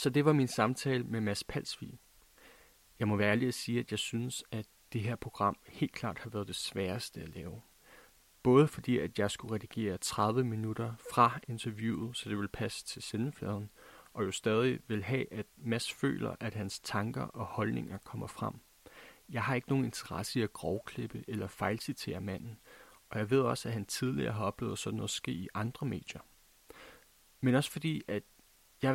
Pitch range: 105-130 Hz